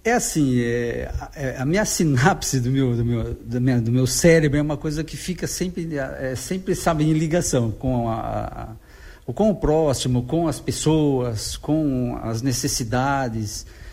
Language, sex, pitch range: Portuguese, male, 125-185 Hz